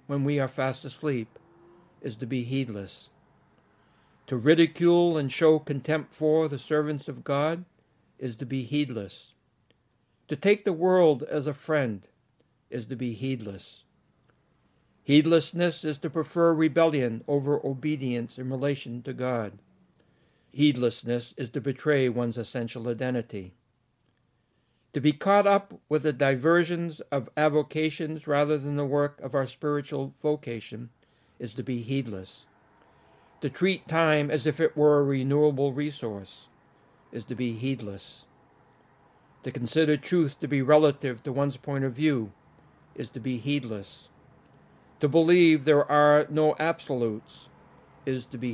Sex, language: male, English